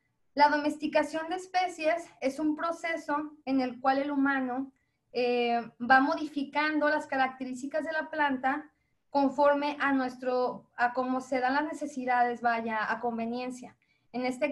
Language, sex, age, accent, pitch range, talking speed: Spanish, female, 20-39, Mexican, 255-300 Hz, 140 wpm